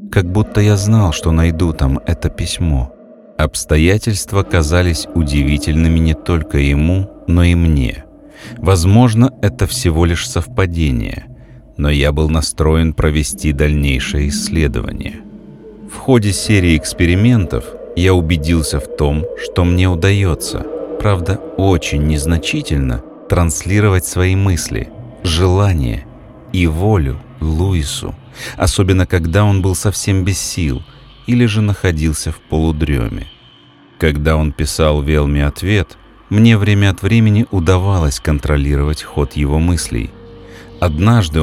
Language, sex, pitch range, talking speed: Russian, male, 80-100 Hz, 115 wpm